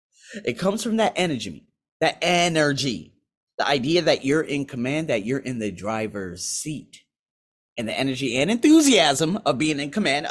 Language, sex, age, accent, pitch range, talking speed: English, male, 30-49, American, 175-245 Hz, 165 wpm